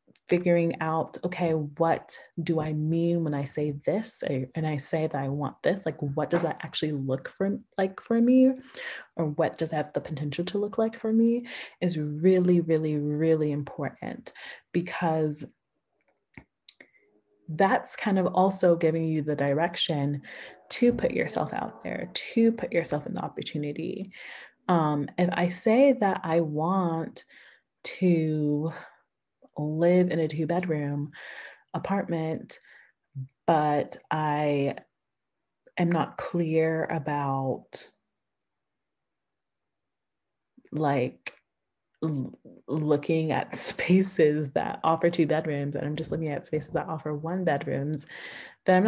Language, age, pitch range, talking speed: English, 20-39, 150-185 Hz, 130 wpm